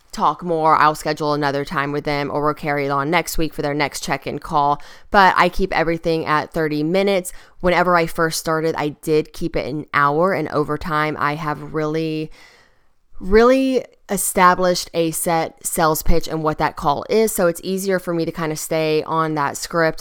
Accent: American